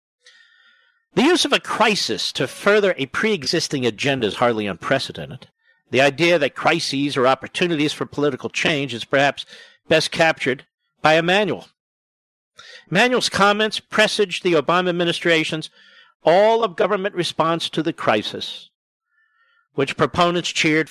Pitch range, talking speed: 145-210 Hz, 120 wpm